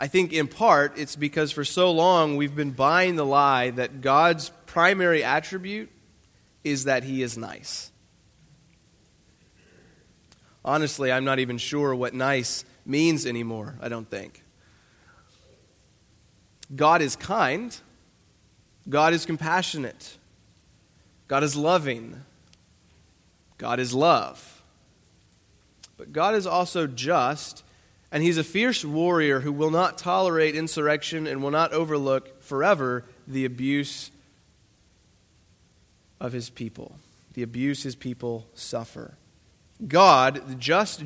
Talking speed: 115 wpm